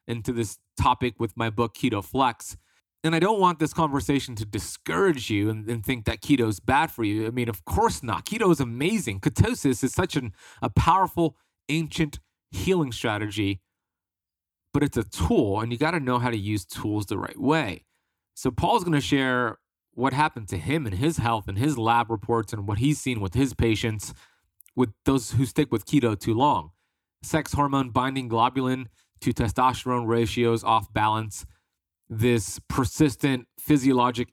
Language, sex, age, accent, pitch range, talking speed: English, male, 30-49, American, 110-135 Hz, 175 wpm